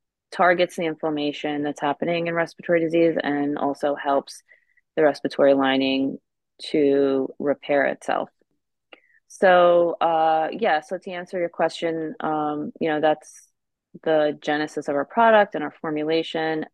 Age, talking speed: 30-49, 135 wpm